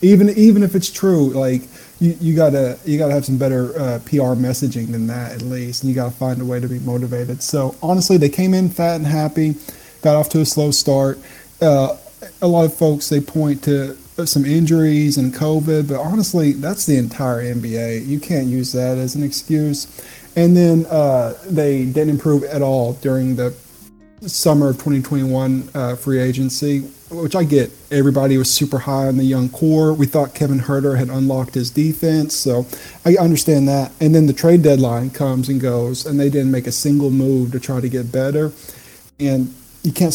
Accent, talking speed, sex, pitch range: American, 195 wpm, male, 130-155 Hz